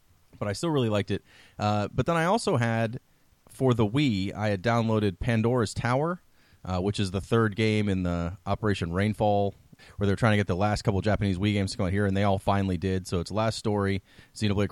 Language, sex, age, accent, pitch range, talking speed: English, male, 30-49, American, 95-115 Hz, 225 wpm